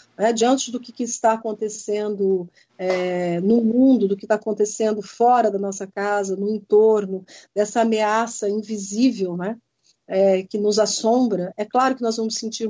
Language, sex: Portuguese, female